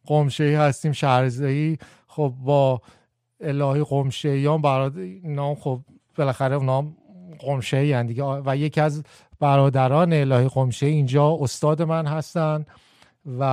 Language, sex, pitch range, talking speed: Persian, male, 140-215 Hz, 115 wpm